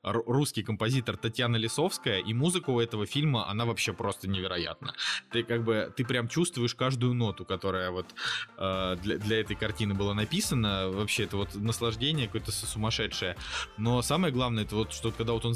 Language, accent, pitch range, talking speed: Russian, native, 105-125 Hz, 175 wpm